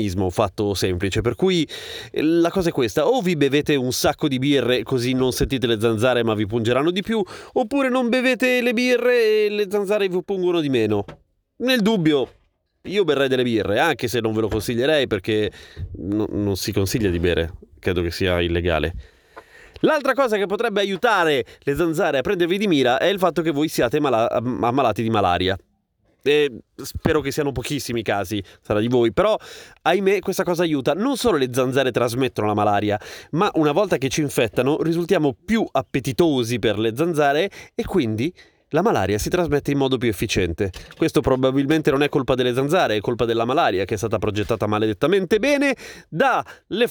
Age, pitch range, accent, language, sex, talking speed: 30-49, 110-175 Hz, native, Italian, male, 180 wpm